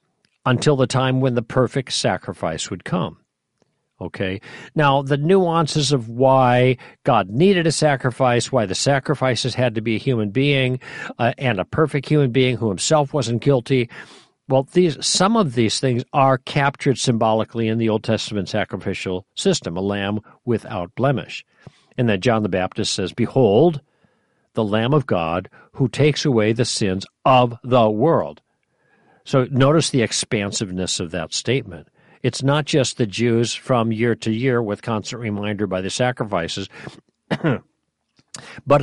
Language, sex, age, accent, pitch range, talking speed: English, male, 50-69, American, 105-140 Hz, 155 wpm